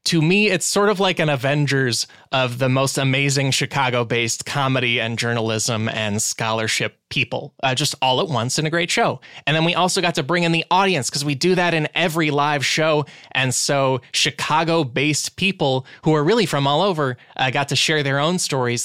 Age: 20-39